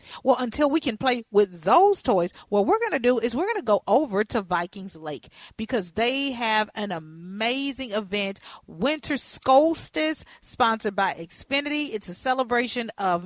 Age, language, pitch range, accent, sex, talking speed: 40-59, English, 215-285 Hz, American, female, 165 wpm